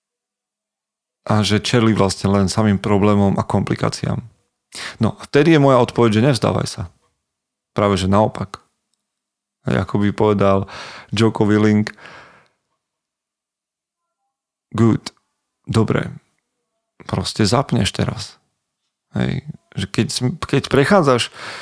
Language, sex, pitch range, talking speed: Slovak, male, 100-120 Hz, 95 wpm